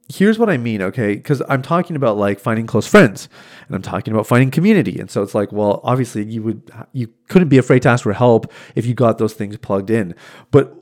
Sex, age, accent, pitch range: male, 30-49, American, 105-150 Hz